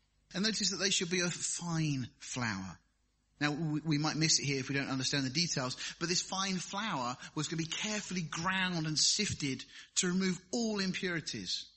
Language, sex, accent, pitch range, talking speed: English, male, British, 140-185 Hz, 190 wpm